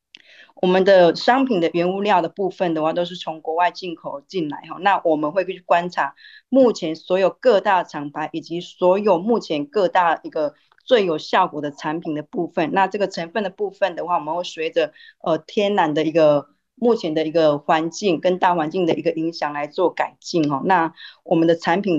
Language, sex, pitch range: Chinese, female, 155-190 Hz